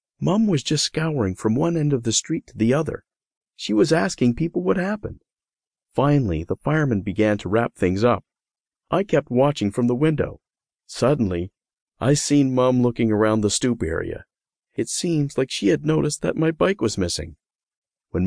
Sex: male